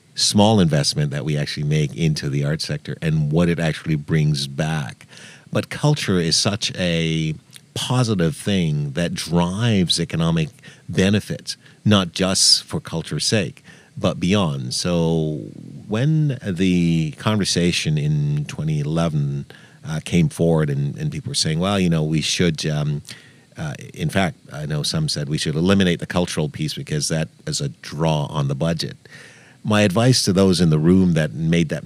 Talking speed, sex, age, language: 160 wpm, male, 50-69, English